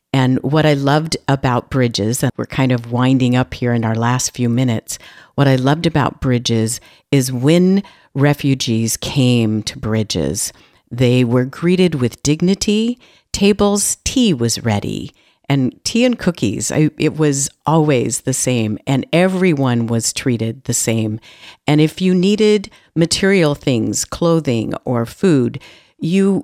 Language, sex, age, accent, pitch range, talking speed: English, female, 50-69, American, 120-170 Hz, 145 wpm